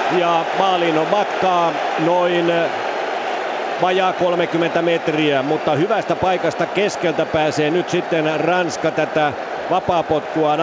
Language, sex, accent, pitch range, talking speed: Finnish, male, native, 135-155 Hz, 100 wpm